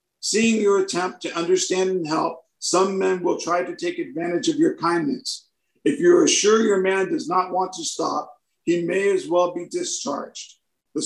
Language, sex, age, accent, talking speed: English, male, 50-69, American, 190 wpm